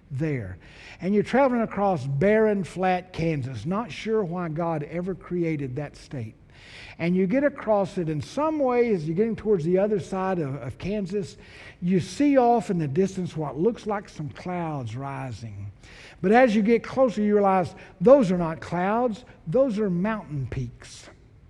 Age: 60-79